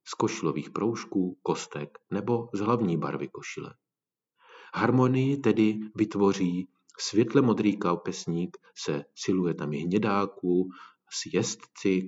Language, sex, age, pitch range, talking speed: Czech, male, 40-59, 90-115 Hz, 105 wpm